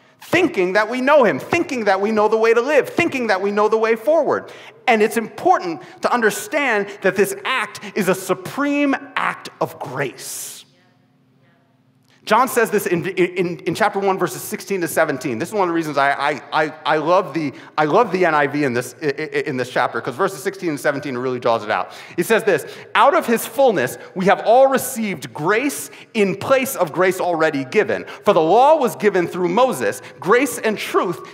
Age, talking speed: 30-49, 200 wpm